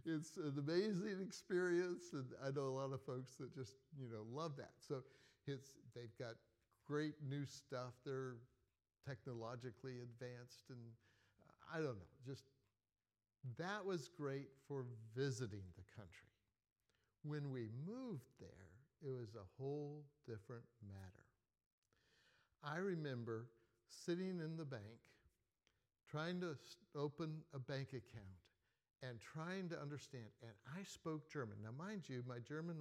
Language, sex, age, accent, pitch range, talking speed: English, male, 60-79, American, 115-155 Hz, 135 wpm